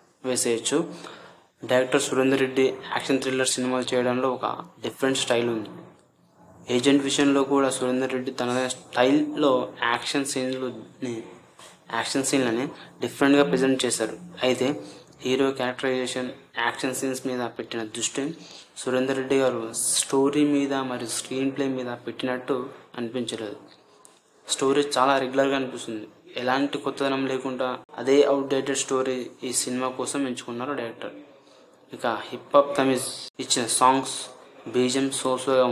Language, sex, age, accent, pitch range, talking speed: Telugu, male, 20-39, native, 120-135 Hz, 120 wpm